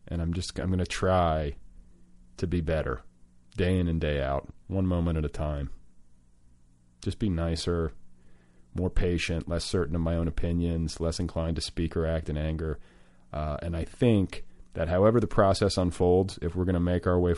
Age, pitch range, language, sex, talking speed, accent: 30-49, 80-100 Hz, English, male, 190 wpm, American